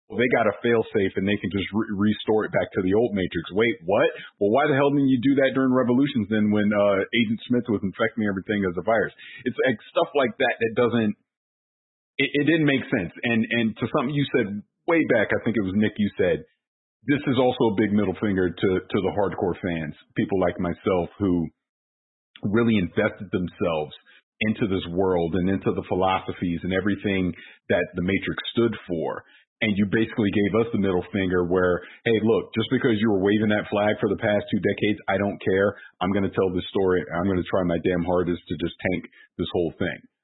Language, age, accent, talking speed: English, 40-59, American, 215 wpm